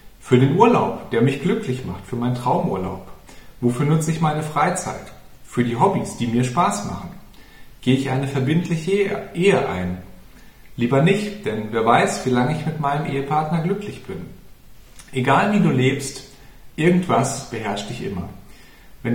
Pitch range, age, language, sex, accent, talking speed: 125-190 Hz, 40-59, German, male, German, 155 wpm